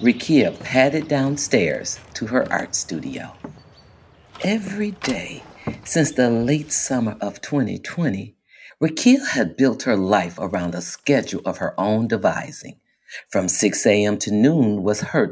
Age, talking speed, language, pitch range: 50-69, 135 wpm, English, 105-155 Hz